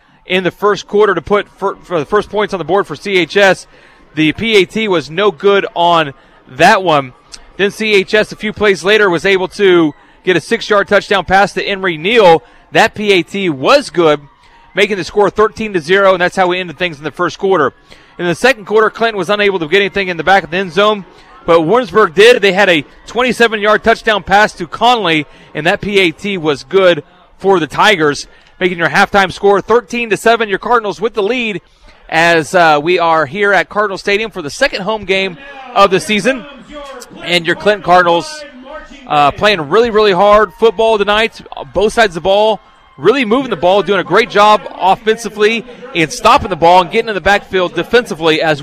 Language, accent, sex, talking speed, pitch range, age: English, American, male, 195 wpm, 180-215 Hz, 30-49